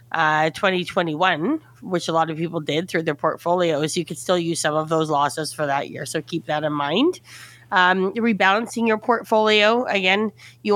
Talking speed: 185 wpm